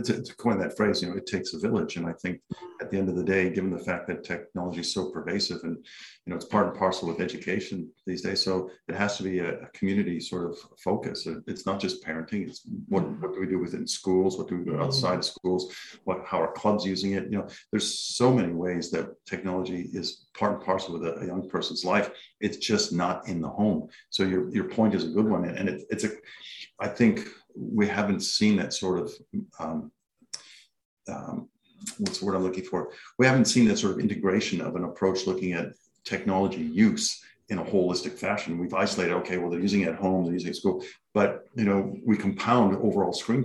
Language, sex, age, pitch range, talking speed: English, male, 50-69, 90-105 Hz, 230 wpm